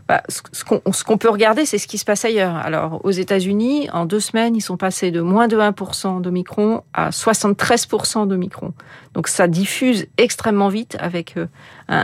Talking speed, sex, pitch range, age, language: 175 wpm, female, 175-220 Hz, 40-59, French